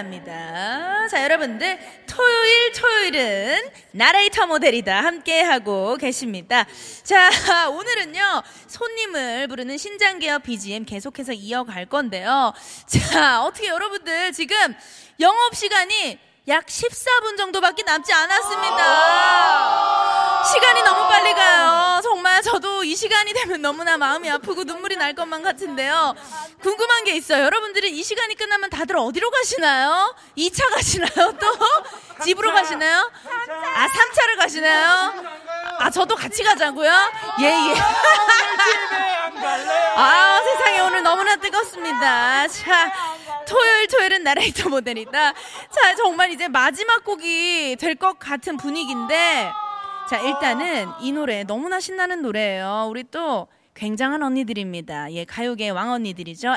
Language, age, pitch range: Korean, 20-39, 265-400 Hz